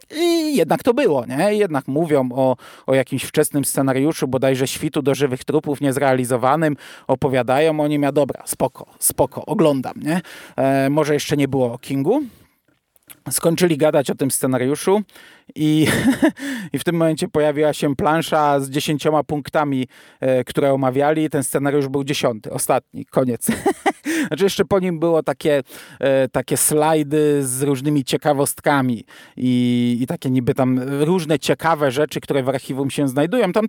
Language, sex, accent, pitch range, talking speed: Polish, male, native, 135-165 Hz, 150 wpm